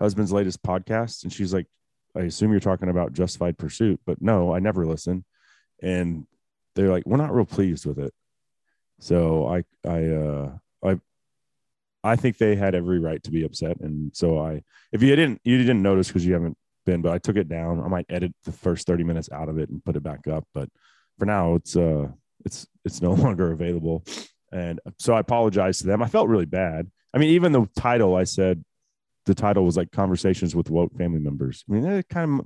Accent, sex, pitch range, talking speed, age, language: American, male, 85-120 Hz, 215 wpm, 30-49, English